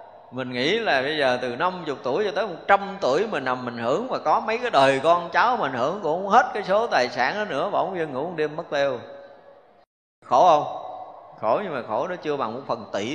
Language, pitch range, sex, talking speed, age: Vietnamese, 140-230 Hz, male, 235 wpm, 20-39